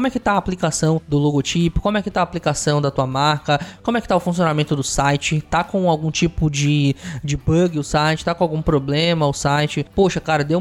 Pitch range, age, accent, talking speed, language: 150-185 Hz, 20-39, Brazilian, 245 wpm, Portuguese